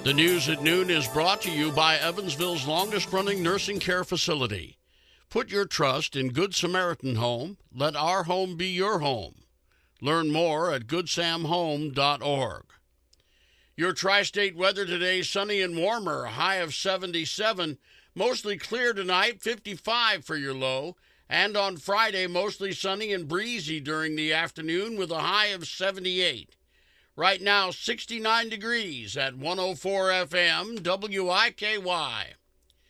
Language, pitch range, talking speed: English, 160-195 Hz, 130 wpm